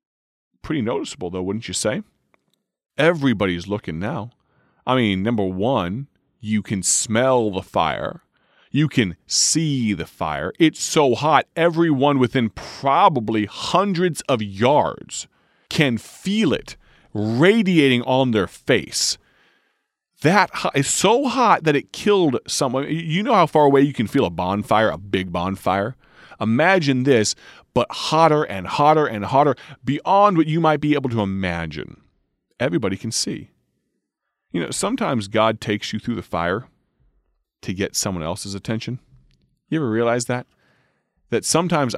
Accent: American